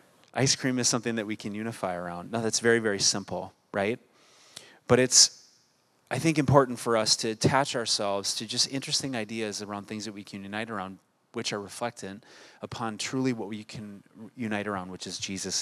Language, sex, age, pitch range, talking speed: English, male, 30-49, 100-125 Hz, 190 wpm